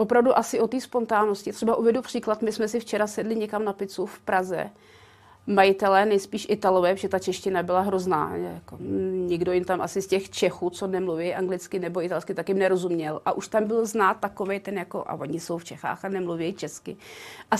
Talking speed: 200 wpm